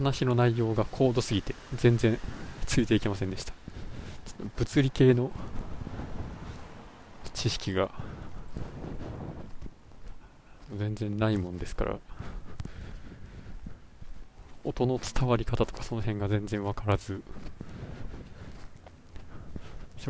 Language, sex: Japanese, male